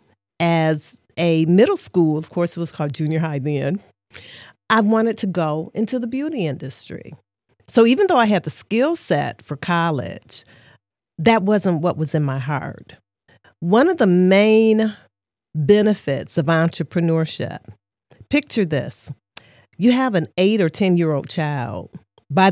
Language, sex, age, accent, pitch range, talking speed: English, female, 40-59, American, 155-215 Hz, 150 wpm